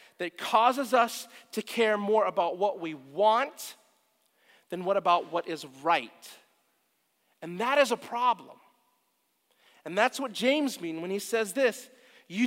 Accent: American